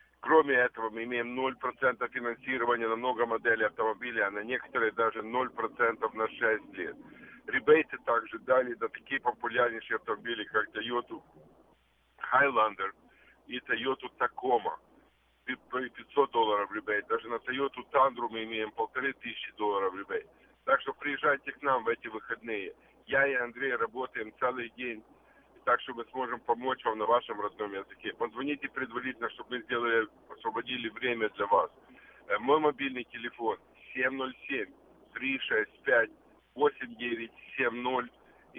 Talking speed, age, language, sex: 125 wpm, 50-69, Russian, male